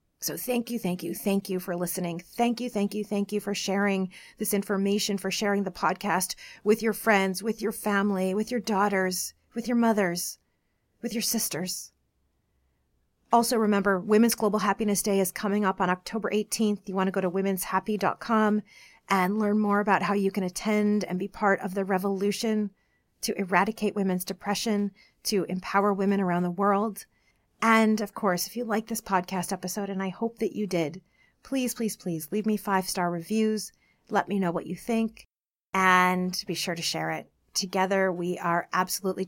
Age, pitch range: 30-49, 180-210 Hz